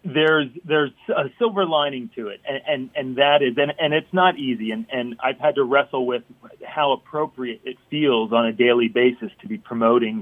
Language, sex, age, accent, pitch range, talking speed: English, male, 30-49, American, 115-145 Hz, 205 wpm